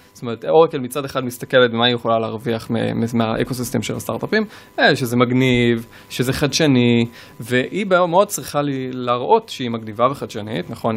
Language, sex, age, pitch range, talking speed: Hebrew, male, 20-39, 115-130 Hz, 160 wpm